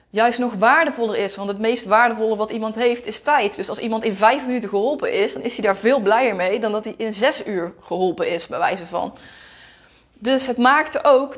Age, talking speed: 20-39, 225 wpm